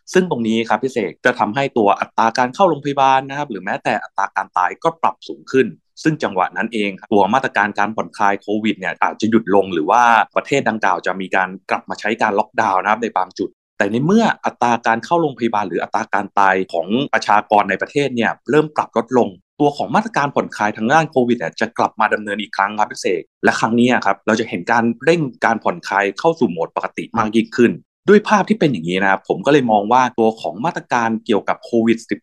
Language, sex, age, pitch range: English, male, 20-39, 105-135 Hz